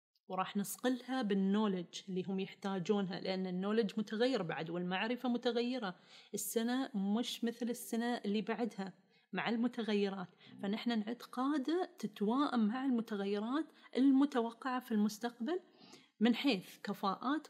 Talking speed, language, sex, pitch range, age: 105 wpm, Arabic, female, 200-260 Hz, 30-49